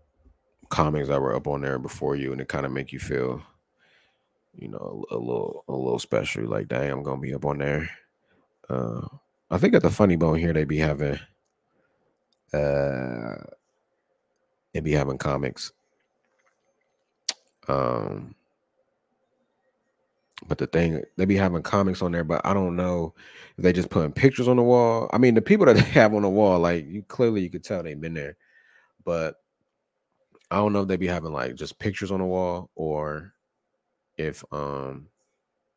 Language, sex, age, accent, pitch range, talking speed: English, male, 30-49, American, 70-95 Hz, 180 wpm